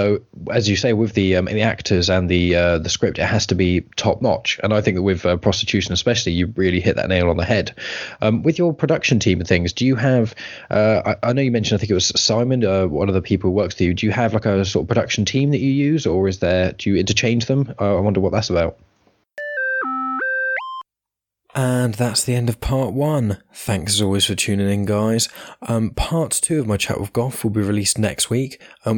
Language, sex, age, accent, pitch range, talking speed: English, male, 20-39, British, 95-120 Hz, 250 wpm